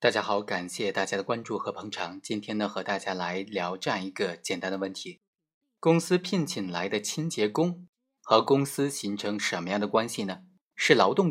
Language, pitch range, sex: Chinese, 110-180 Hz, male